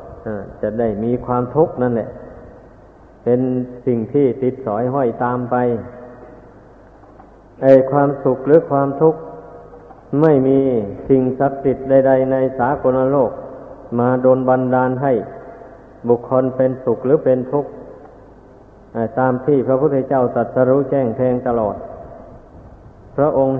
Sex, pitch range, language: male, 125-135 Hz, Thai